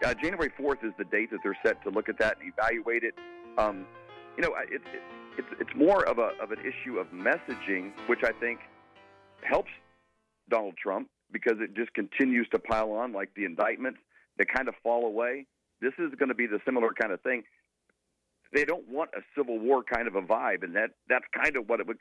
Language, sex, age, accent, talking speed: English, male, 50-69, American, 220 wpm